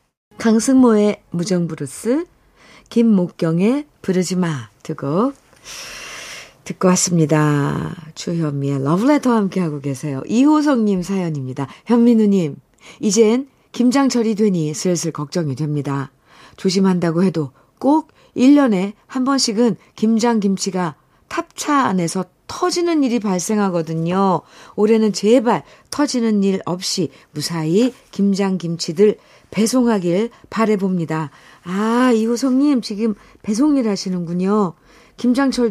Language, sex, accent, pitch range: Korean, female, native, 170-230 Hz